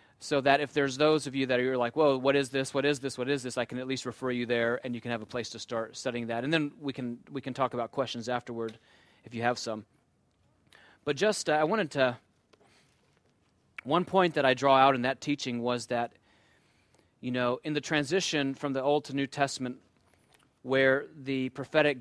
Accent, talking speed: American, 225 wpm